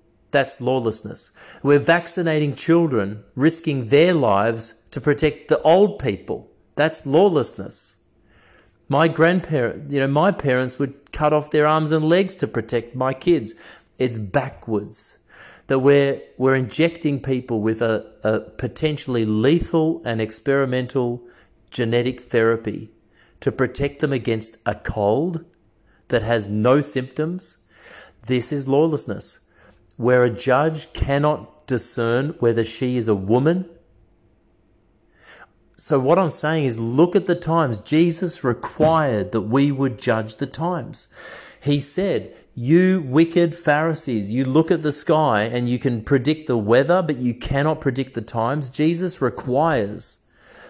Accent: Australian